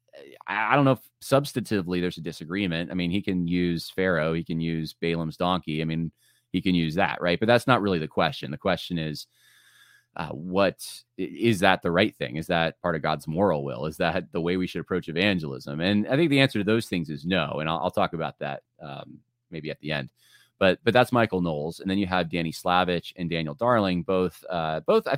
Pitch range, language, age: 80-105 Hz, English, 30-49